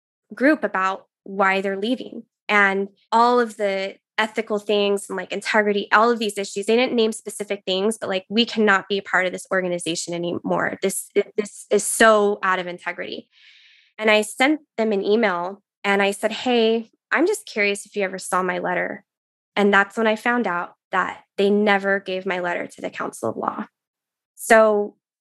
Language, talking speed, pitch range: English, 185 wpm, 195-230 Hz